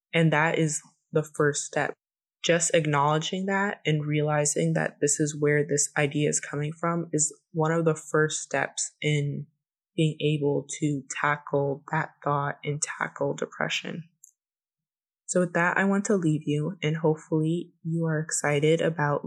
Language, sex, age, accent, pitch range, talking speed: English, female, 20-39, American, 150-165 Hz, 155 wpm